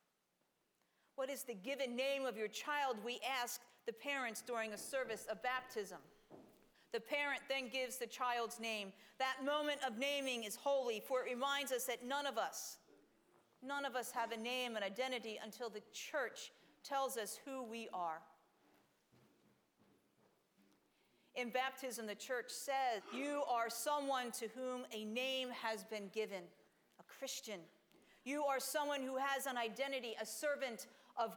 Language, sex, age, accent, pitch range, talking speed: English, female, 40-59, American, 220-265 Hz, 155 wpm